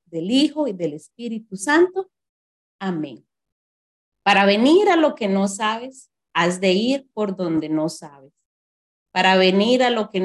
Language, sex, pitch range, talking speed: Spanish, female, 170-250 Hz, 150 wpm